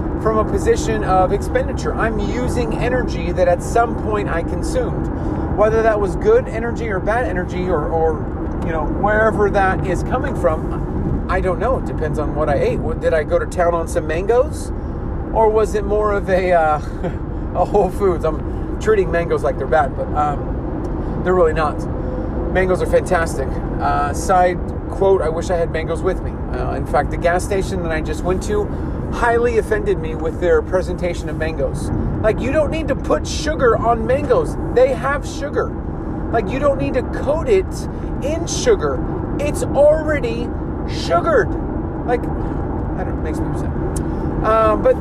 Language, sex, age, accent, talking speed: English, male, 30-49, American, 180 wpm